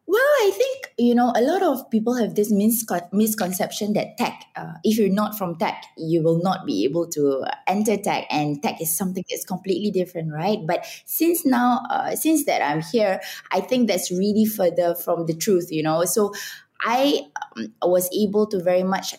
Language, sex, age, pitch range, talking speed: English, female, 20-39, 170-215 Hz, 195 wpm